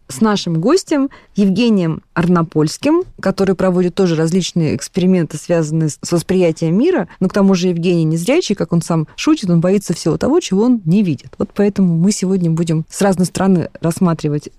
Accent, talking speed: native, 175 wpm